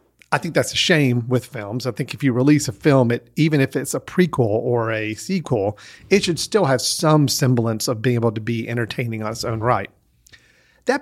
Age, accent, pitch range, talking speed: 40-59, American, 120-145 Hz, 220 wpm